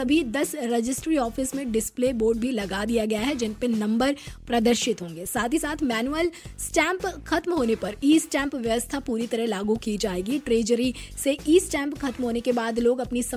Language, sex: Hindi, female